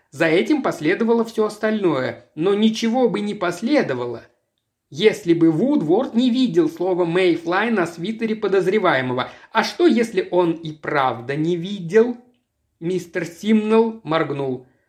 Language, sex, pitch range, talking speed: Russian, male, 170-235 Hz, 125 wpm